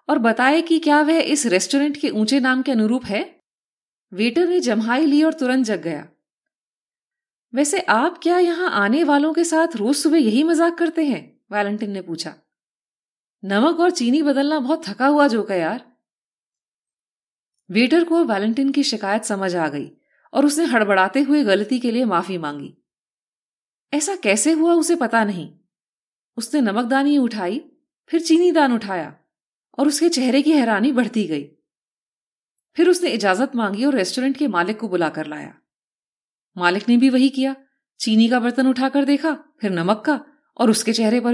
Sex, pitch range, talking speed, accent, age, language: female, 215-300 Hz, 160 wpm, native, 30-49, Hindi